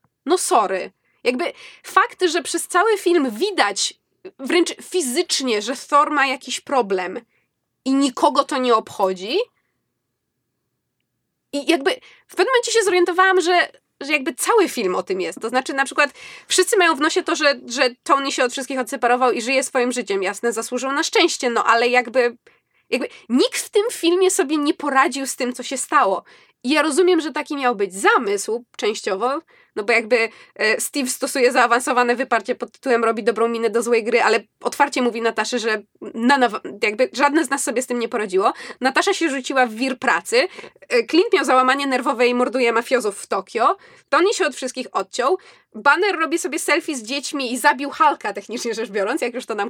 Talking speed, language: 180 wpm, Polish